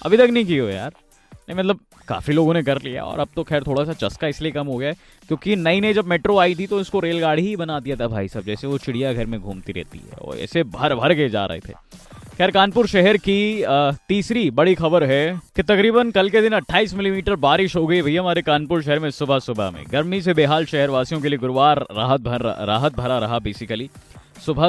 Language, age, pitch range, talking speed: Hindi, 20-39, 120-180 Hz, 230 wpm